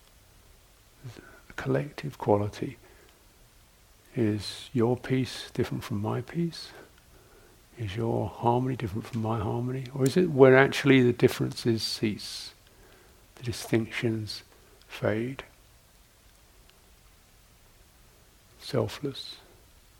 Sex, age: male, 60-79